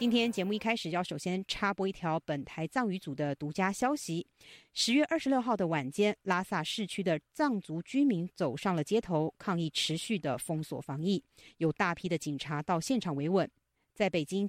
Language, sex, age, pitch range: Chinese, female, 50-69, 165-235 Hz